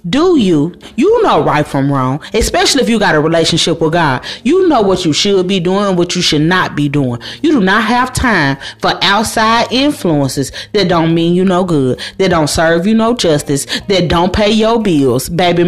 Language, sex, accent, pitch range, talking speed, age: English, female, American, 165-265 Hz, 210 wpm, 40-59